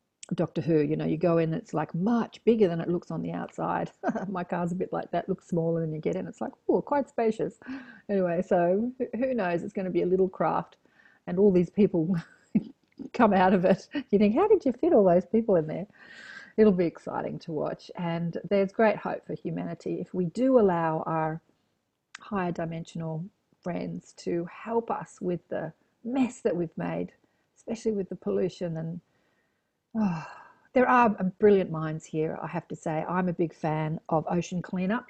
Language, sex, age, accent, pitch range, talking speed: English, female, 40-59, Australian, 170-205 Hz, 195 wpm